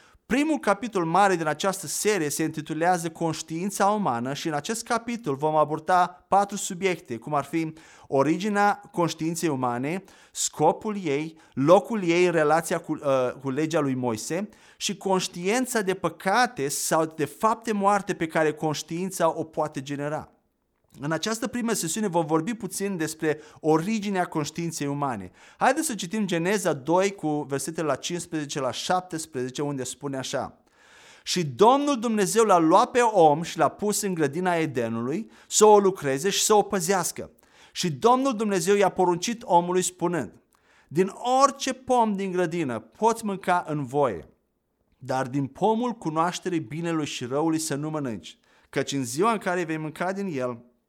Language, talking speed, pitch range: Romanian, 150 wpm, 150-200 Hz